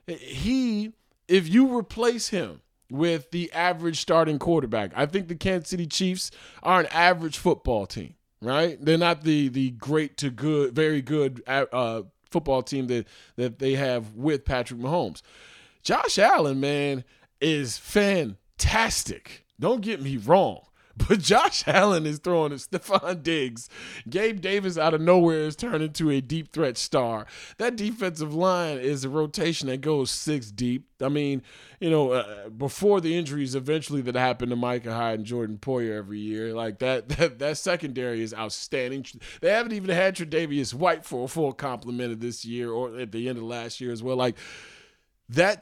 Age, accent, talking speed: 20-39, American, 170 wpm